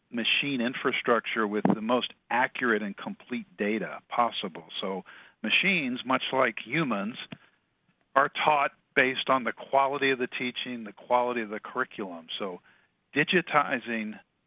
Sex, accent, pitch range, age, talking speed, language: male, American, 110-135 Hz, 50-69, 130 wpm, English